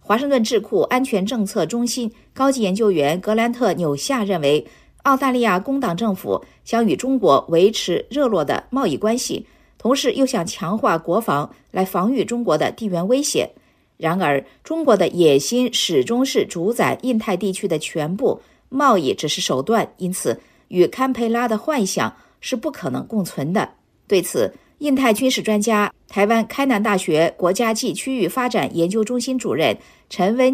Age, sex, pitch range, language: 50-69, female, 185-250 Hz, Chinese